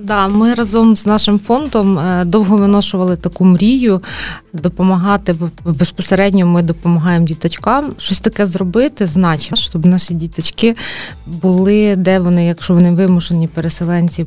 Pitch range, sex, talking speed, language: 175-210 Hz, female, 125 wpm, Ukrainian